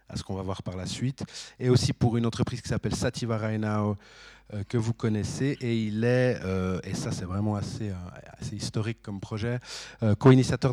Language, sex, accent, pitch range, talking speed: French, male, French, 100-115 Hz, 205 wpm